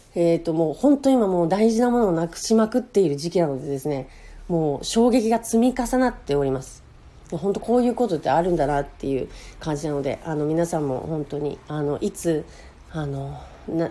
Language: Japanese